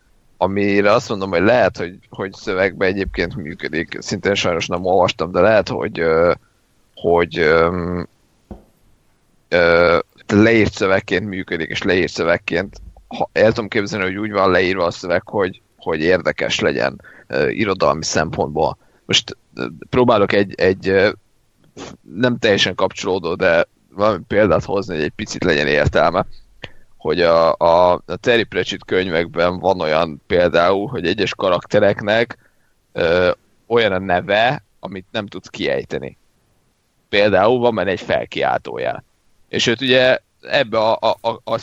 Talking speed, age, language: 130 wpm, 30-49, Hungarian